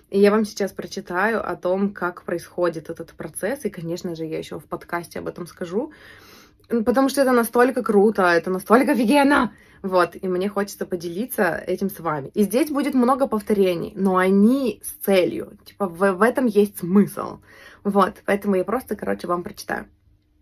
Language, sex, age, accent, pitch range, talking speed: Russian, female, 20-39, native, 180-220 Hz, 175 wpm